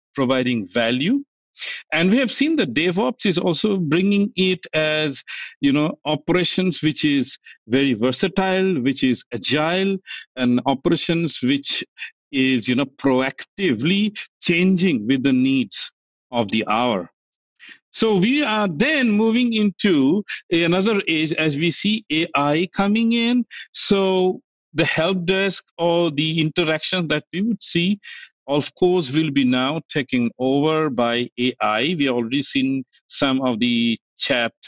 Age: 50-69